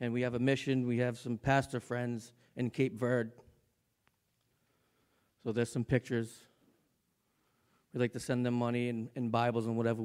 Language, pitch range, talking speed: English, 110-130 Hz, 165 wpm